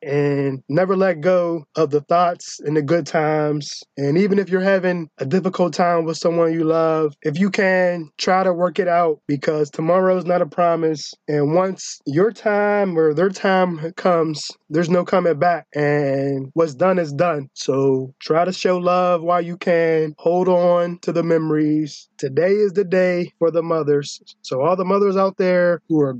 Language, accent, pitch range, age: English, American, 150-180 Hz, 20-39